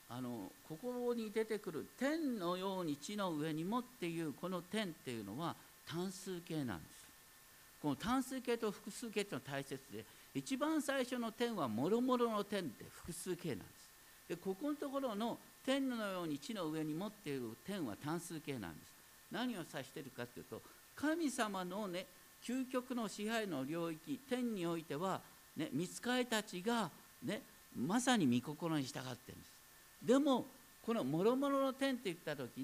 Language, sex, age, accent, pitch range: Japanese, male, 50-69, native, 160-245 Hz